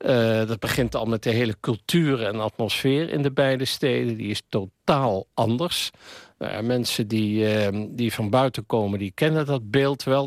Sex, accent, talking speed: male, Dutch, 175 wpm